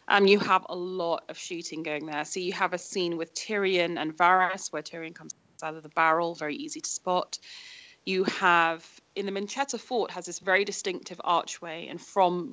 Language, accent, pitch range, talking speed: English, British, 165-195 Hz, 200 wpm